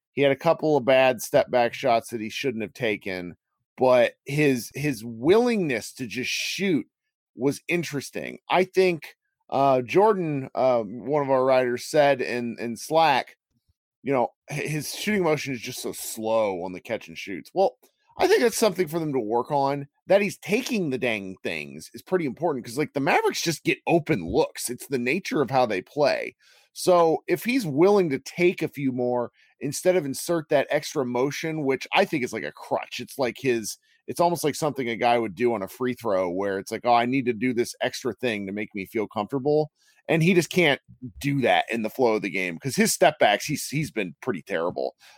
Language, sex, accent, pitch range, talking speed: English, male, American, 120-170 Hz, 210 wpm